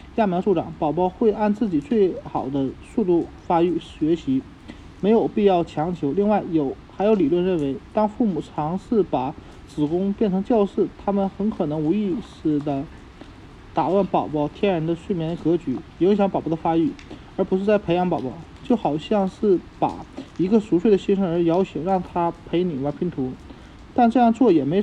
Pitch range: 165-210 Hz